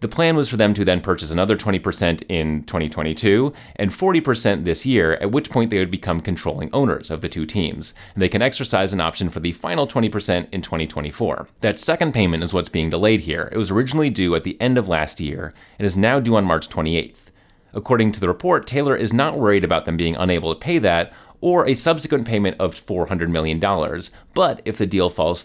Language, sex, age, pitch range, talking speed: English, male, 30-49, 90-120 Hz, 210 wpm